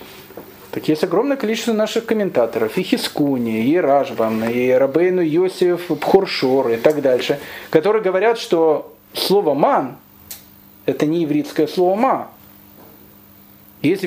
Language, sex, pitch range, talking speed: Russian, male, 140-205 Hz, 130 wpm